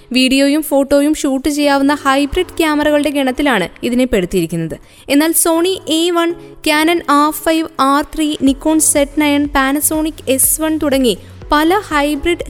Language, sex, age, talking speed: Malayalam, female, 20-39, 130 wpm